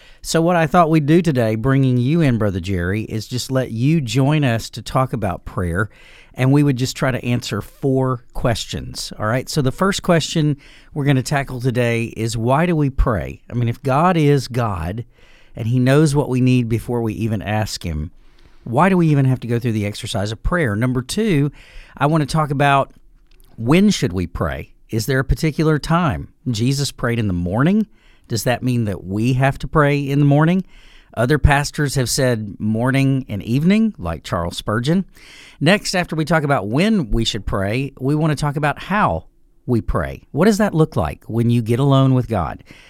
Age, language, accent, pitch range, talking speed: 50-69, English, American, 110-145 Hz, 205 wpm